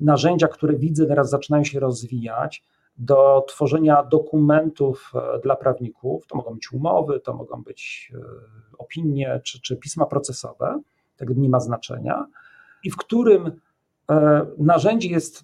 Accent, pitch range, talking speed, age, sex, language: native, 130-160 Hz, 130 wpm, 40-59, male, Polish